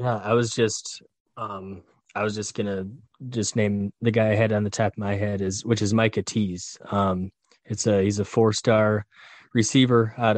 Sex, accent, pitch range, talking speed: male, American, 100-110 Hz, 200 wpm